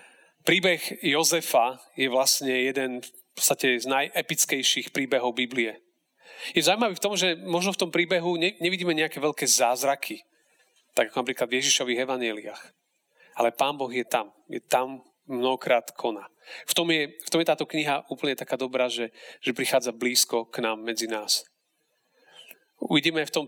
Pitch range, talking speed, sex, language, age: 115-145 Hz, 150 wpm, male, Slovak, 40-59